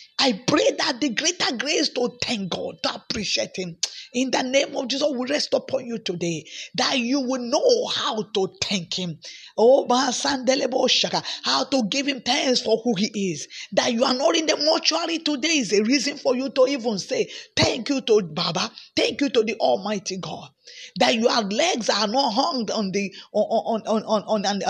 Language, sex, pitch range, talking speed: English, female, 205-270 Hz, 180 wpm